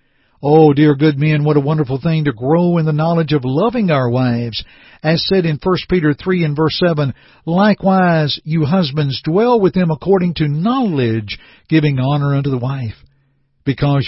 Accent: American